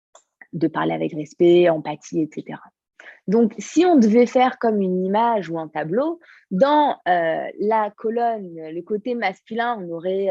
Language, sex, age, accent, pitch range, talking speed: French, female, 20-39, French, 175-230 Hz, 150 wpm